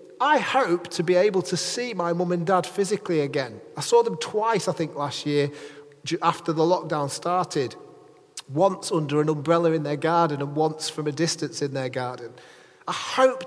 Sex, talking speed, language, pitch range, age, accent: male, 185 wpm, English, 150-220 Hz, 30-49, British